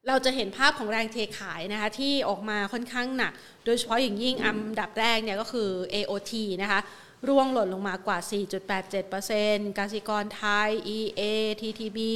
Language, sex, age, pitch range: Thai, female, 30-49, 205-245 Hz